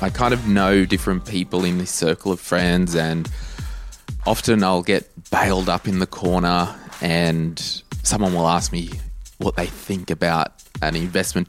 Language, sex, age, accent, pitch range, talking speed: English, male, 20-39, Australian, 85-110 Hz, 160 wpm